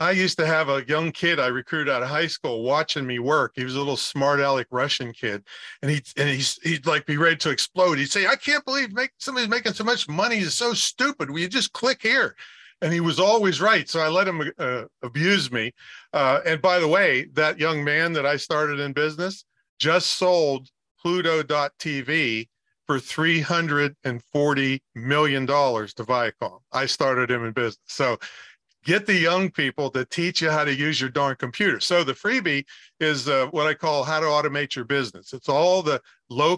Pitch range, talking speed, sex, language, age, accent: 135-170 Hz, 200 wpm, male, English, 50-69, American